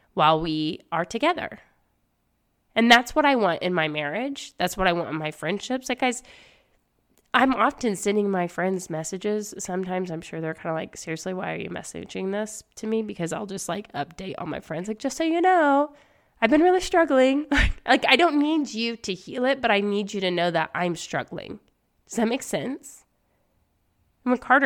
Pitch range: 180-255 Hz